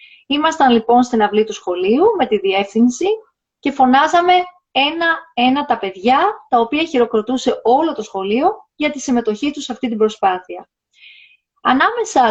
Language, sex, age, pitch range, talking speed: Greek, female, 30-49, 220-305 Hz, 140 wpm